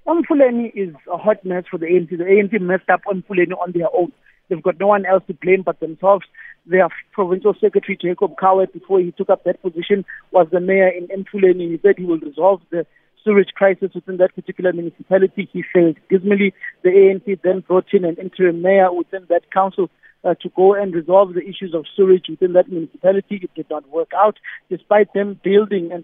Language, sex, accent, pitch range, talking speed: English, male, South African, 180-205 Hz, 205 wpm